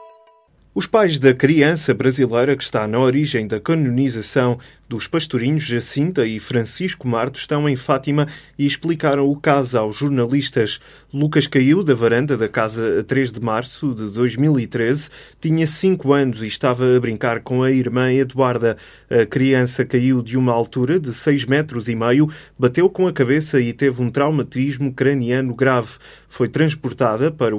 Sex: male